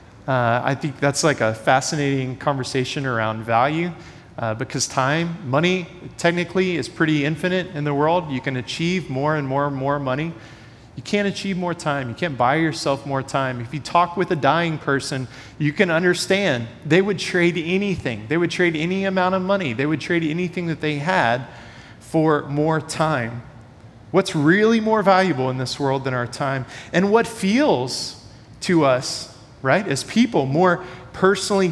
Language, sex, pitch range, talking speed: English, male, 130-175 Hz, 175 wpm